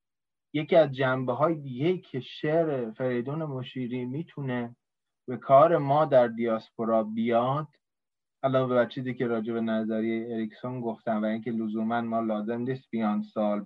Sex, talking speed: male, 135 wpm